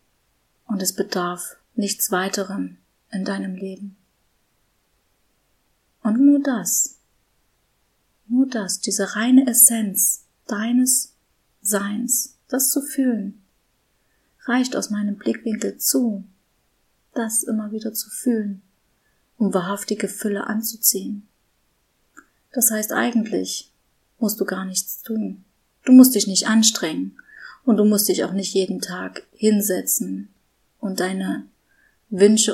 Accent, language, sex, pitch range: German, German, female, 190-220 Hz